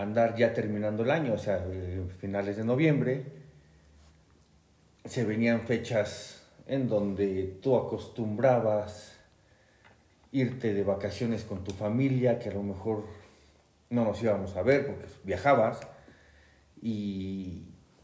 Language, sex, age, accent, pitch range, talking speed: Spanish, male, 40-59, Mexican, 100-140 Hz, 115 wpm